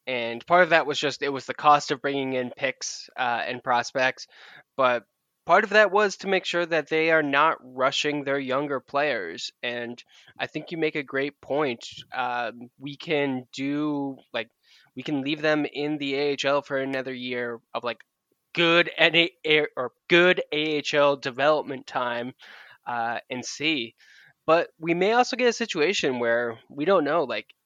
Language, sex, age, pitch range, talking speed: English, male, 10-29, 130-155 Hz, 170 wpm